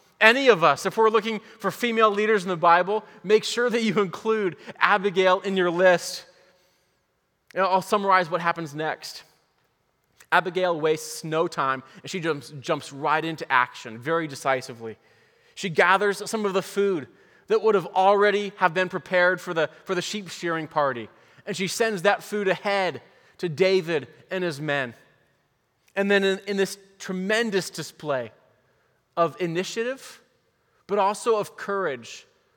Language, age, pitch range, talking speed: English, 20-39, 170-215 Hz, 150 wpm